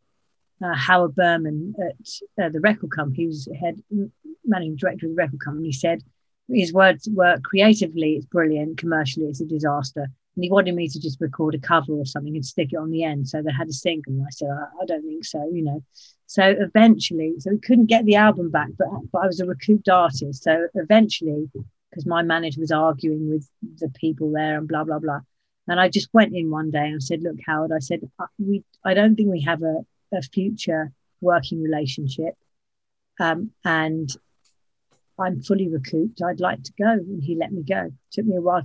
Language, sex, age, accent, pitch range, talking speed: English, female, 40-59, British, 155-200 Hz, 215 wpm